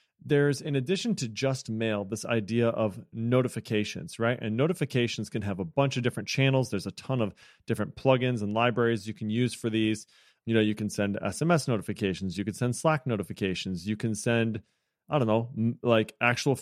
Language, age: English, 30-49